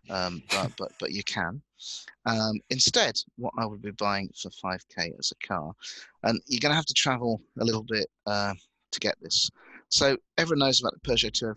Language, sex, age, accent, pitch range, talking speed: English, male, 30-49, British, 100-130 Hz, 215 wpm